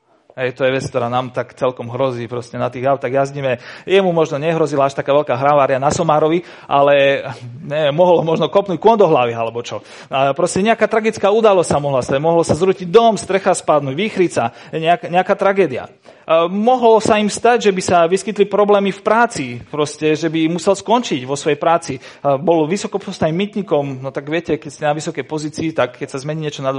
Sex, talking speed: male, 190 wpm